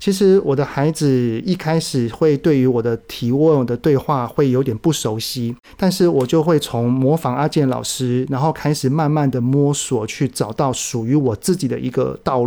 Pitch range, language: 125-155 Hz, Chinese